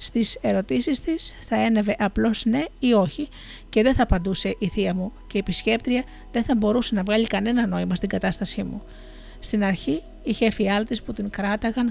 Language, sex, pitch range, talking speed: Greek, female, 195-235 Hz, 180 wpm